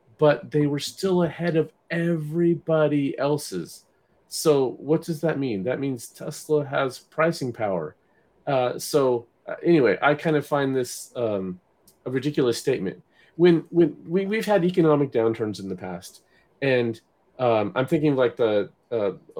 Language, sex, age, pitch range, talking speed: English, male, 40-59, 120-160 Hz, 155 wpm